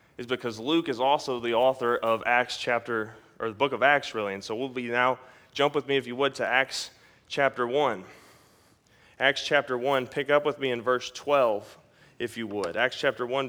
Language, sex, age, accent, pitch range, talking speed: English, male, 30-49, American, 120-145 Hz, 210 wpm